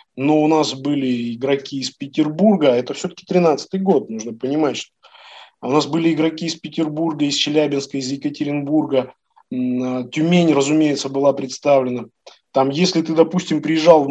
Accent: native